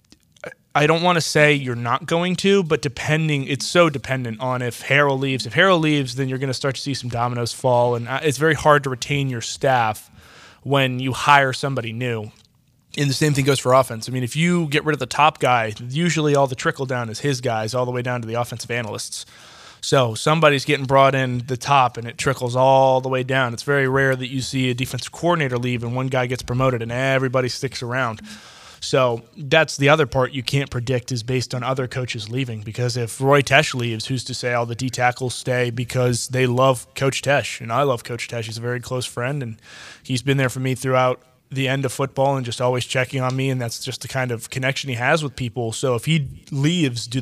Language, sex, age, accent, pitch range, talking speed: English, male, 20-39, American, 125-140 Hz, 235 wpm